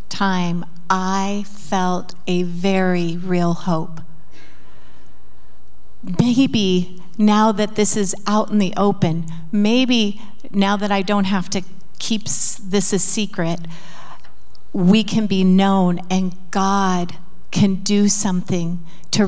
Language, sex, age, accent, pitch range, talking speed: English, female, 40-59, American, 175-200 Hz, 115 wpm